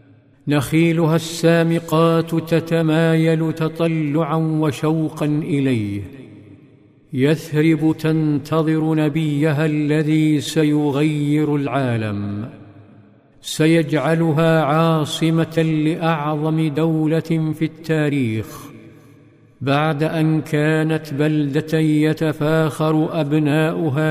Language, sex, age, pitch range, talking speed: Arabic, male, 50-69, 140-160 Hz, 60 wpm